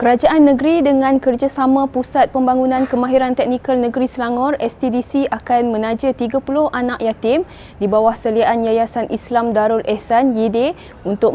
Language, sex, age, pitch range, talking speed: Malay, female, 20-39, 220-260 Hz, 130 wpm